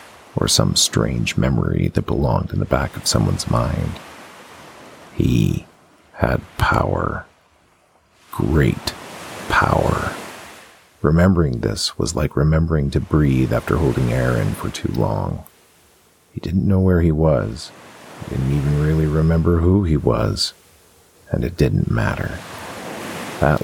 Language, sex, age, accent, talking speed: English, male, 40-59, American, 125 wpm